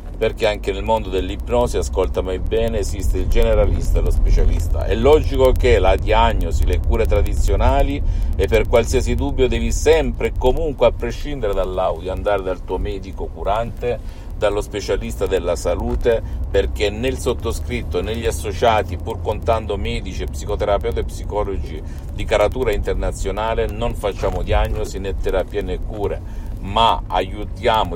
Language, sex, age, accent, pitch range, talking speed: Italian, male, 50-69, native, 80-105 Hz, 140 wpm